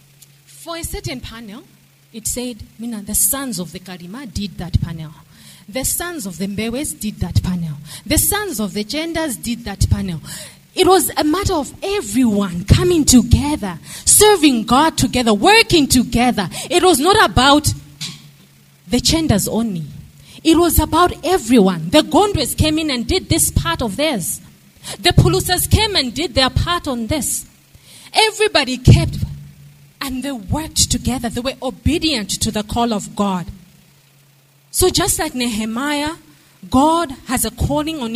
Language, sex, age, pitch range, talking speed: English, female, 30-49, 175-290 Hz, 155 wpm